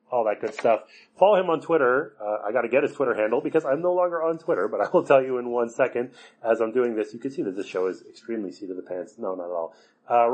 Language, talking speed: English, 295 wpm